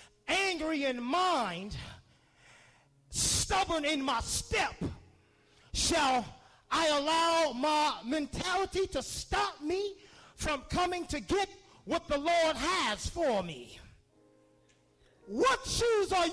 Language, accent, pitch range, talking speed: English, American, 245-350 Hz, 105 wpm